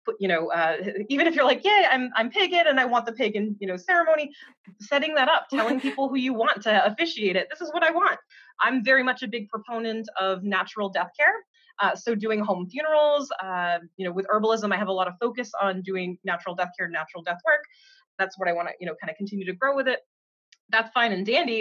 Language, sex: English, female